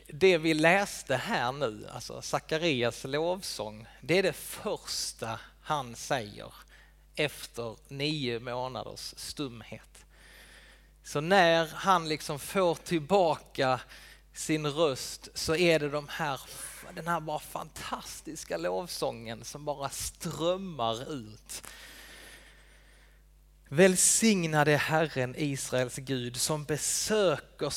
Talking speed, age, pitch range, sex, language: 100 wpm, 30-49, 125-165 Hz, male, Swedish